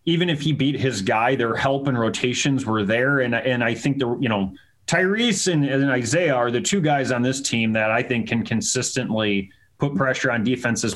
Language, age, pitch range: English, 30-49, 115-140 Hz